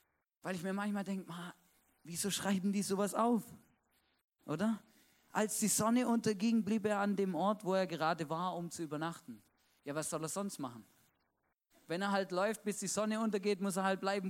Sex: male